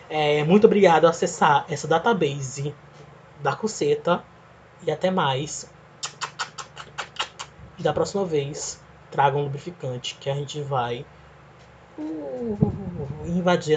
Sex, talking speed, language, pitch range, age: male, 105 wpm, Portuguese, 145-190 Hz, 20-39